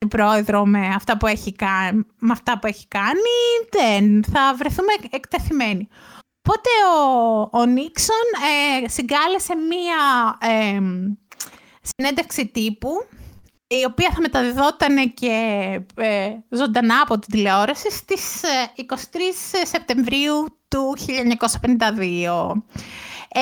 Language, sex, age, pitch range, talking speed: Greek, female, 20-39, 230-330 Hz, 95 wpm